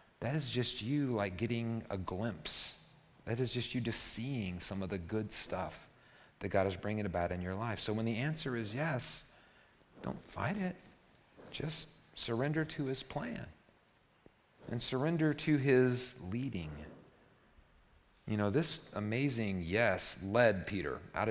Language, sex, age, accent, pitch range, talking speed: English, male, 40-59, American, 100-135 Hz, 150 wpm